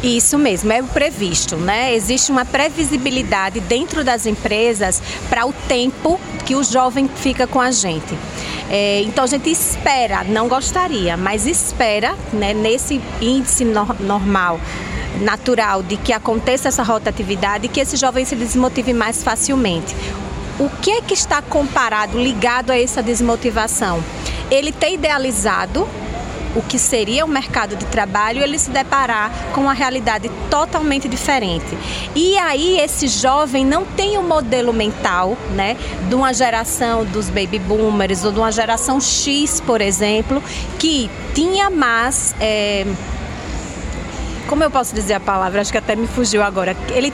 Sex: female